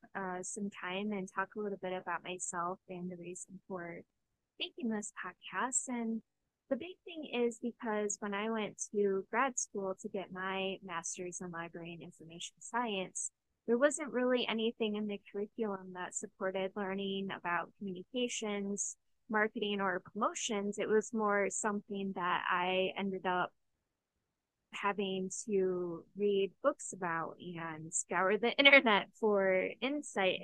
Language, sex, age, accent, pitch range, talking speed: English, female, 10-29, American, 180-220 Hz, 140 wpm